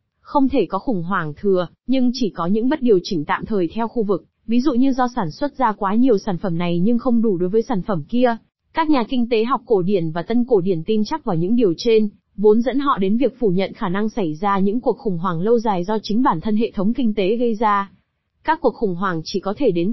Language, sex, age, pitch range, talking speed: Vietnamese, female, 20-39, 195-245 Hz, 270 wpm